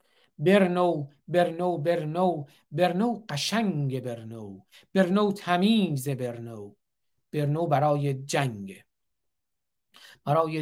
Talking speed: 75 wpm